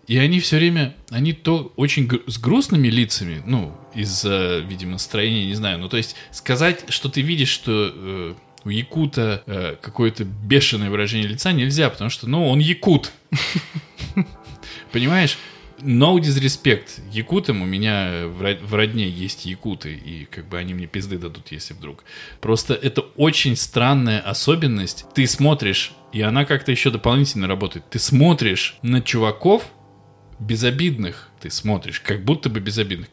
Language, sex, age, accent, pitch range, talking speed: Russian, male, 20-39, native, 100-140 Hz, 145 wpm